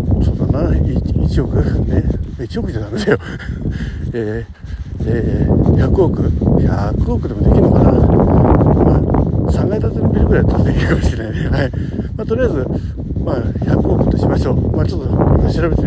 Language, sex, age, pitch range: Japanese, male, 60-79, 90-140 Hz